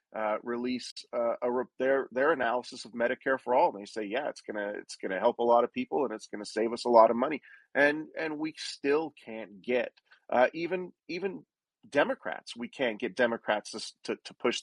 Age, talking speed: 40-59, 205 wpm